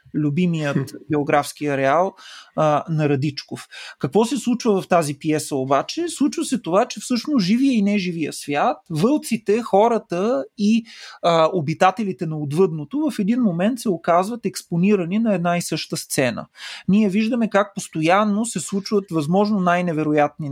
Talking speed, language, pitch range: 135 wpm, Bulgarian, 150-210 Hz